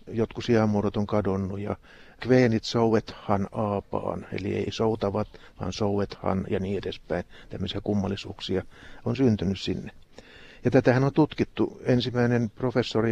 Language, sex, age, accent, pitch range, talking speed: Finnish, male, 60-79, native, 100-120 Hz, 125 wpm